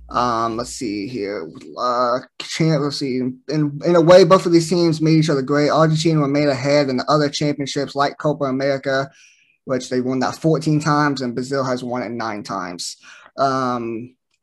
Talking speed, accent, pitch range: 180 wpm, American, 135-165 Hz